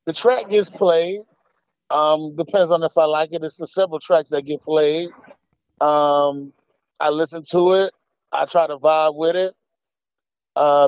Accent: American